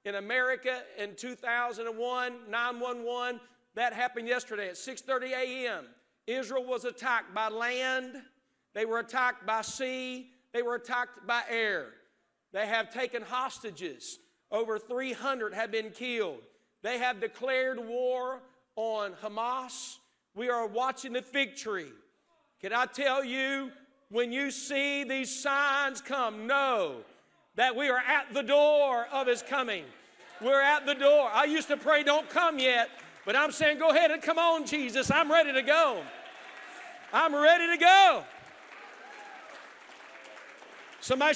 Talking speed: 140 wpm